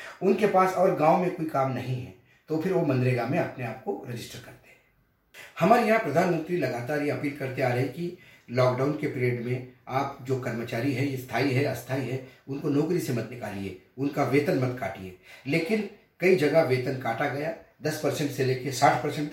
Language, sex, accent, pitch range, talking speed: Hindi, male, native, 125-155 Hz, 195 wpm